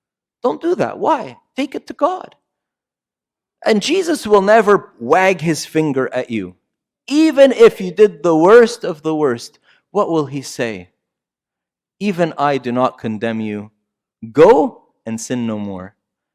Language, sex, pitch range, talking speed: English, male, 115-170 Hz, 150 wpm